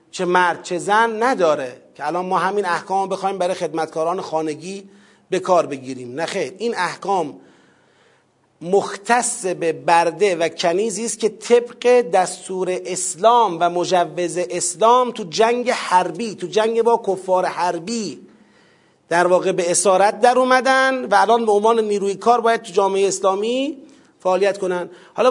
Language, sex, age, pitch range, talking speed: Persian, male, 40-59, 180-220 Hz, 140 wpm